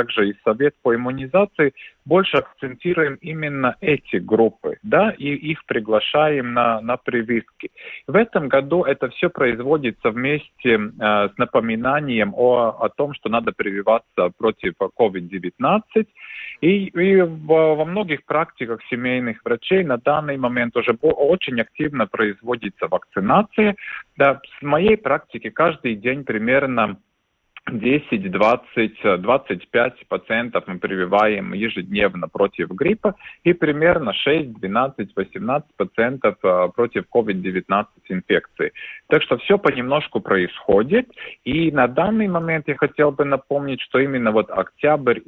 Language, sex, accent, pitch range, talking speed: Russian, male, native, 115-160 Hz, 120 wpm